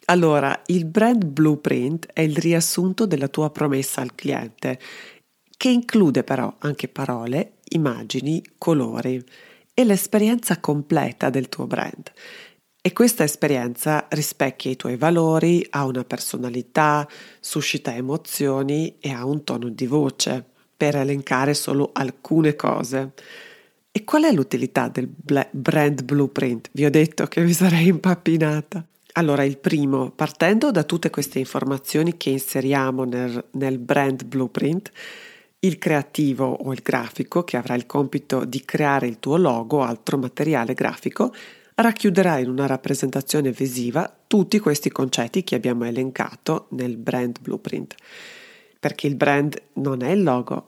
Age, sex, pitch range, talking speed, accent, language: 40-59, female, 135-175 Hz, 135 wpm, native, Italian